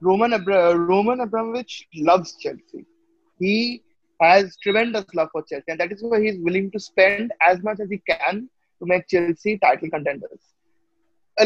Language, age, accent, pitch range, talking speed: English, 20-39, Indian, 180-245 Hz, 160 wpm